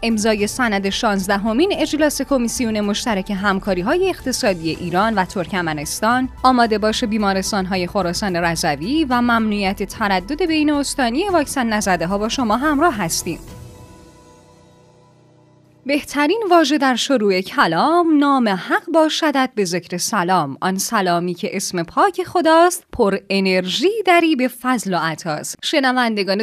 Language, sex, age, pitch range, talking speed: Persian, female, 10-29, 195-305 Hz, 125 wpm